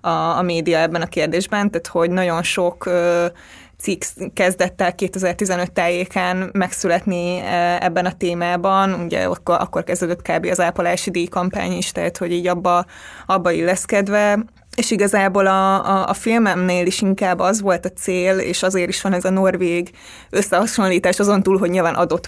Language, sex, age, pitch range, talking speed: Hungarian, female, 20-39, 175-195 Hz, 150 wpm